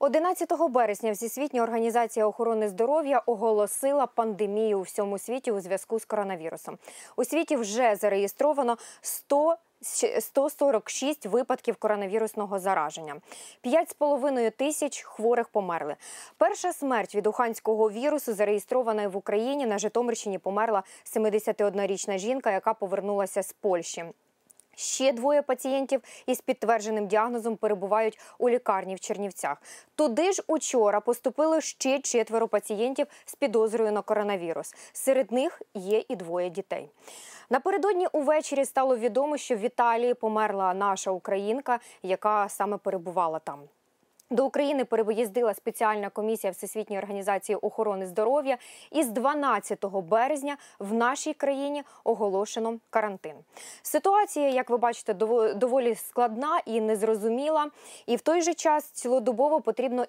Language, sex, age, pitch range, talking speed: Ukrainian, female, 20-39, 210-270 Hz, 120 wpm